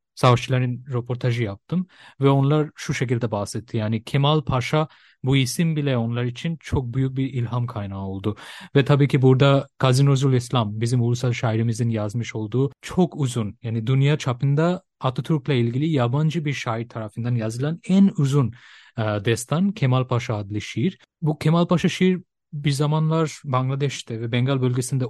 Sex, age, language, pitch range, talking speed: male, 30-49, Turkish, 115-150 Hz, 150 wpm